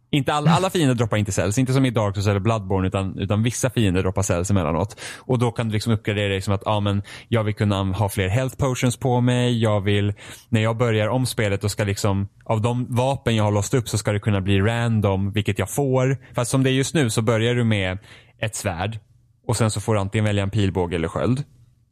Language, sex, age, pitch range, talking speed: Swedish, male, 10-29, 100-125 Hz, 245 wpm